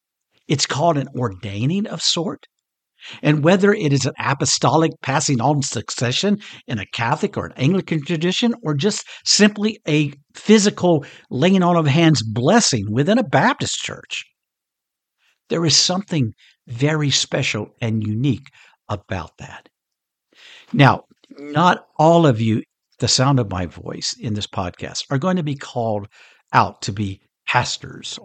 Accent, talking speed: American, 140 wpm